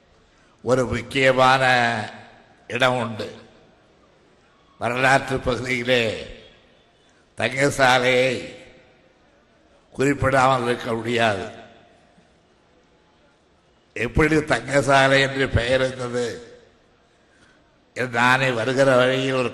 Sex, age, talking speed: male, 60-79, 60 wpm